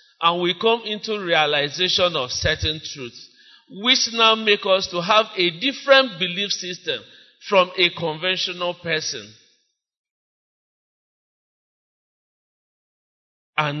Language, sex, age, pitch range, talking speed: English, male, 50-69, 180-270 Hz, 100 wpm